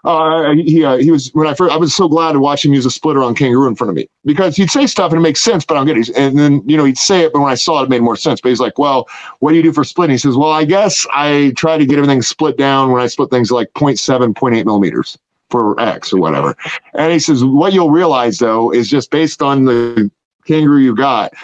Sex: male